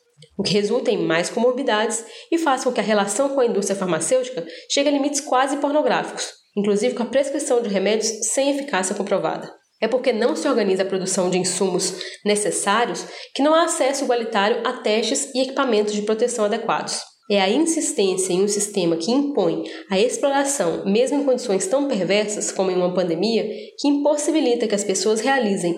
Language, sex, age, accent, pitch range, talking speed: Portuguese, female, 20-39, Brazilian, 200-275 Hz, 180 wpm